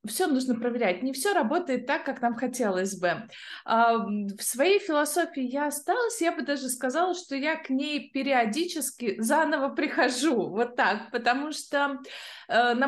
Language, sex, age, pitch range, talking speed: Russian, female, 20-39, 225-275 Hz, 150 wpm